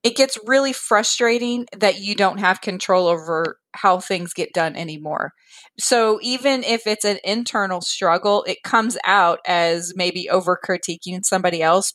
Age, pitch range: 30-49, 185-230 Hz